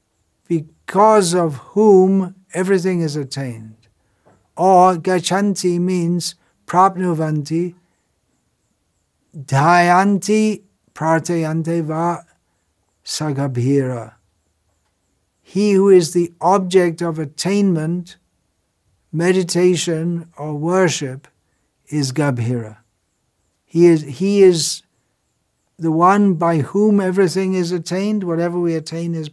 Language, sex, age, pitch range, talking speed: English, male, 60-79, 125-175 Hz, 85 wpm